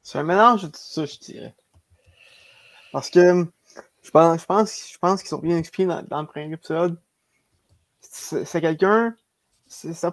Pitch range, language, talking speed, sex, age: 150-180 Hz, French, 165 wpm, male, 20-39